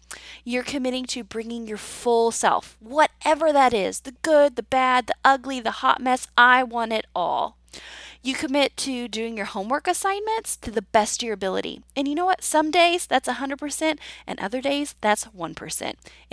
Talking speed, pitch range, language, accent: 180 wpm, 215-280 Hz, English, American